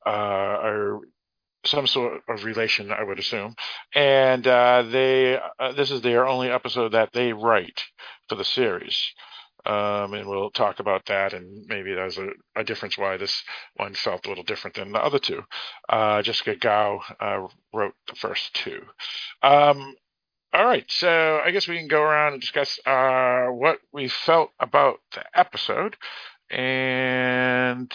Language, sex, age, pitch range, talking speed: English, male, 50-69, 110-140 Hz, 160 wpm